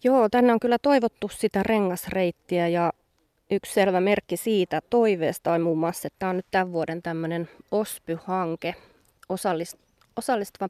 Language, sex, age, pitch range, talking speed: Finnish, female, 20-39, 180-215 Hz, 140 wpm